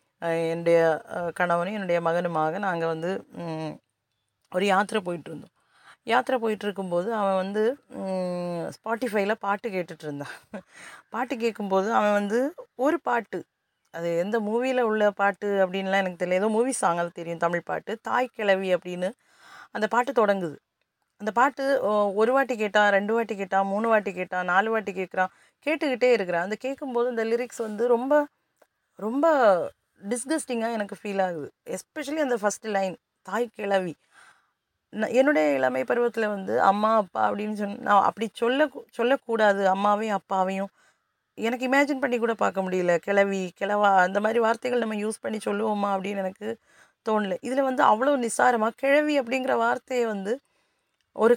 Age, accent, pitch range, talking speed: 30-49, native, 190-240 Hz, 135 wpm